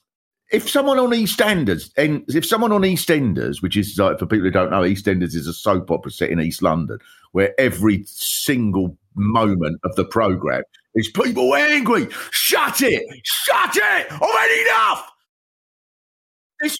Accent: British